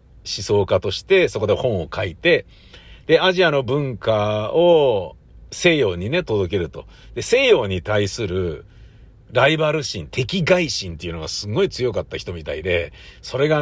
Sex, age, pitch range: male, 50-69, 95-145 Hz